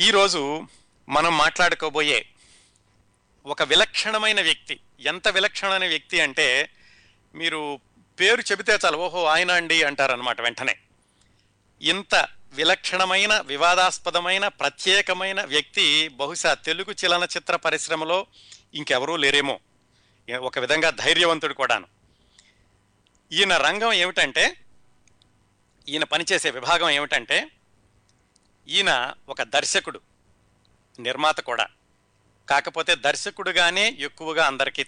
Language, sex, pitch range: Telugu, male, 120-175 Hz